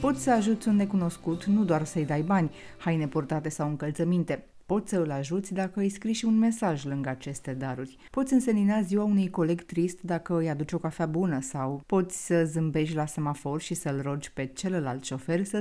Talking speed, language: 200 wpm, Romanian